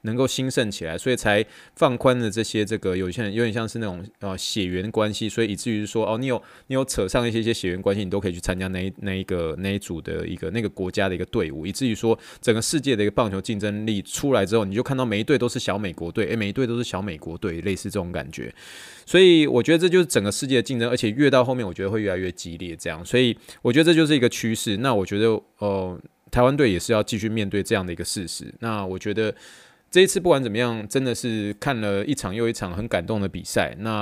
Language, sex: Chinese, male